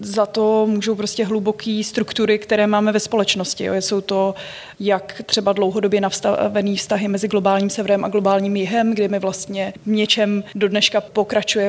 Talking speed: 155 wpm